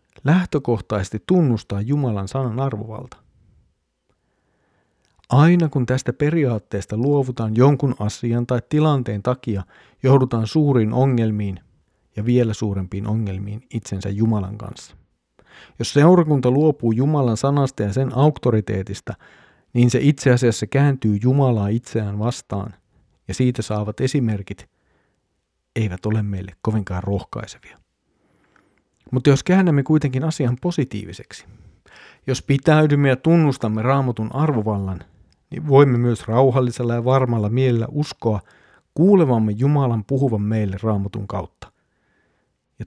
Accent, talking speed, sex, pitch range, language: native, 110 wpm, male, 105-135 Hz, Finnish